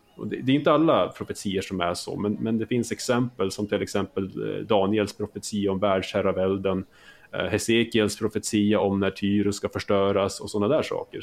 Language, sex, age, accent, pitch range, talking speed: Swedish, male, 30-49, Norwegian, 95-115 Hz, 165 wpm